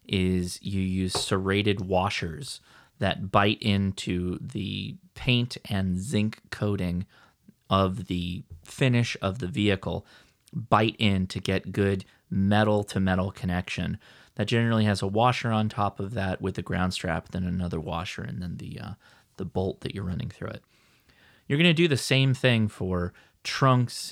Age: 30-49